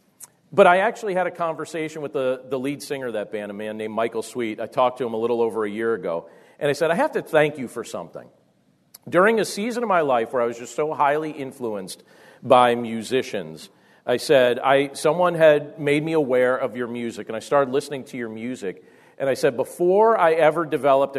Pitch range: 120-155 Hz